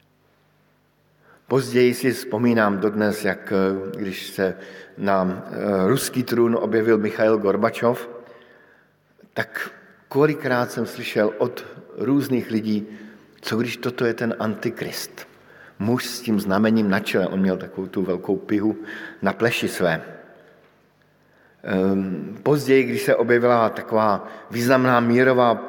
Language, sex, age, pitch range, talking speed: Slovak, male, 50-69, 100-125 Hz, 110 wpm